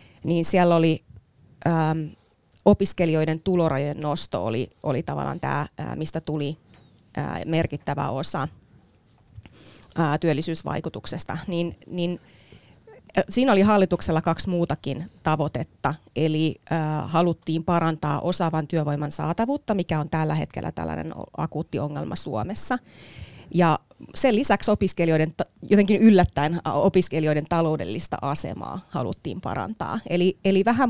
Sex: female